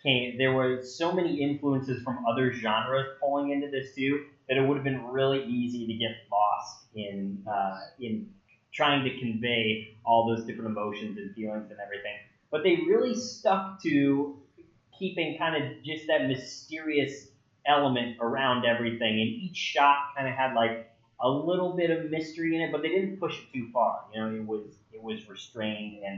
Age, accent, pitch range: 30-49, American, 110-140 Hz